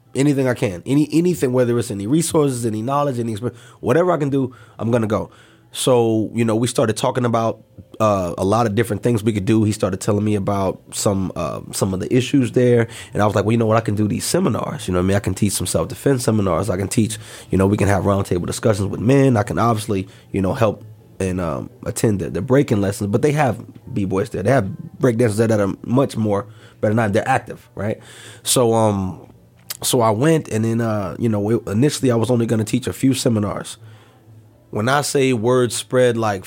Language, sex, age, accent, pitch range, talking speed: English, male, 30-49, American, 105-125 Hz, 235 wpm